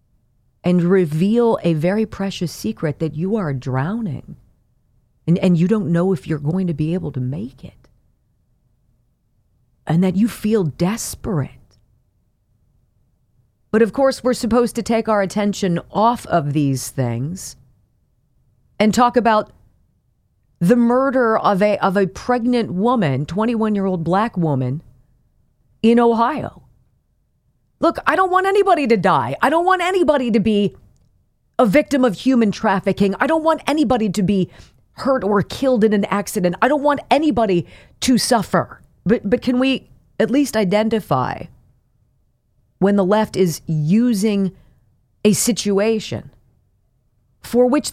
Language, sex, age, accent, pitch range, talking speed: English, female, 40-59, American, 160-240 Hz, 140 wpm